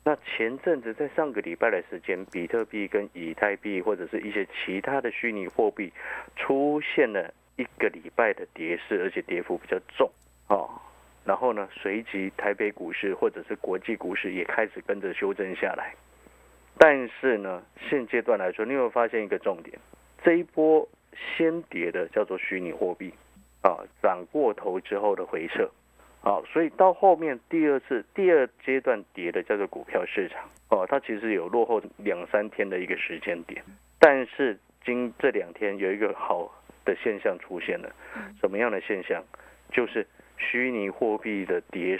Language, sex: Chinese, male